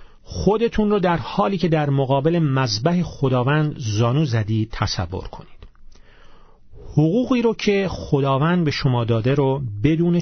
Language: Persian